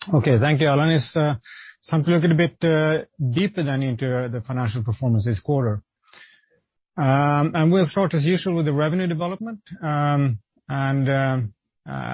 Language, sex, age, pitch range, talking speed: English, male, 30-49, 130-155 Hz, 165 wpm